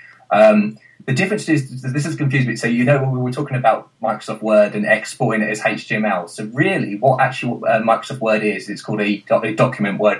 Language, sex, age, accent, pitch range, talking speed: English, male, 20-39, British, 105-135 Hz, 210 wpm